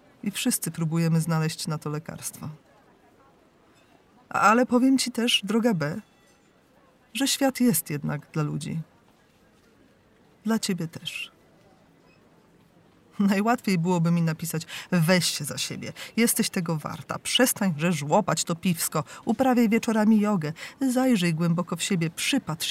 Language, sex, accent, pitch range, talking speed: Polish, female, native, 160-210 Hz, 120 wpm